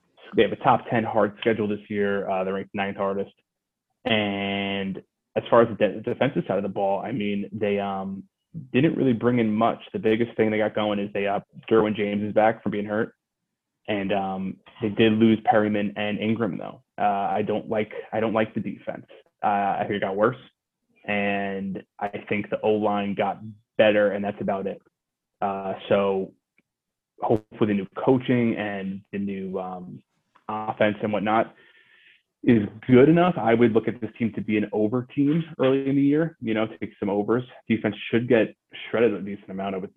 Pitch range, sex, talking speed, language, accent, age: 100-115 Hz, male, 195 wpm, English, American, 20-39